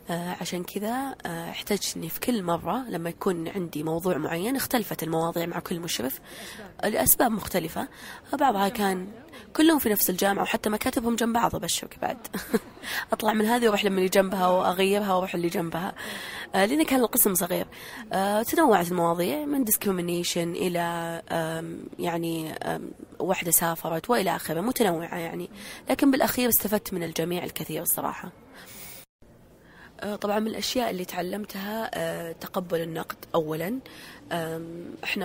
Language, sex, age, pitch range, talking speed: Arabic, female, 20-39, 170-215 Hz, 125 wpm